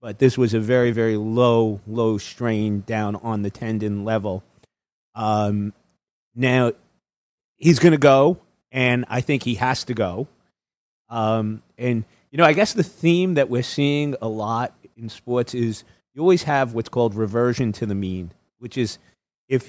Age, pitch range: 30-49, 110-125 Hz